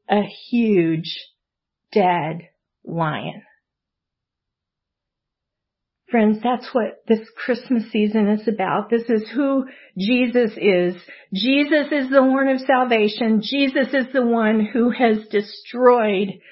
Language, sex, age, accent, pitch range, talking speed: English, female, 50-69, American, 205-250 Hz, 110 wpm